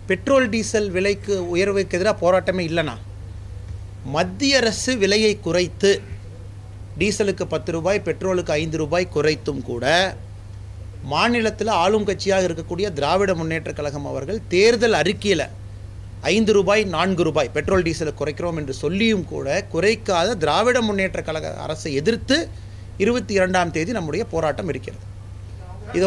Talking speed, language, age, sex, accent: 120 wpm, Tamil, 30-49, male, native